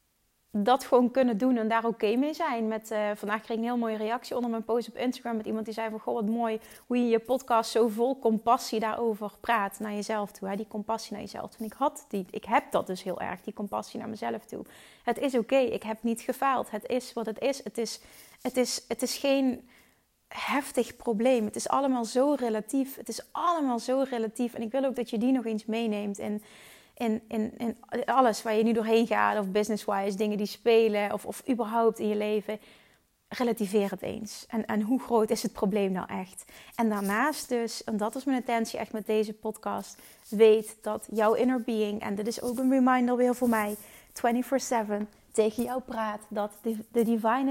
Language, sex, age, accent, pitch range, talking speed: Dutch, female, 30-49, Dutch, 215-245 Hz, 205 wpm